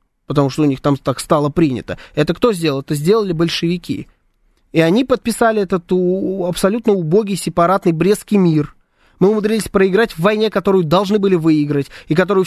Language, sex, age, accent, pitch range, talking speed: Russian, male, 20-39, native, 155-220 Hz, 165 wpm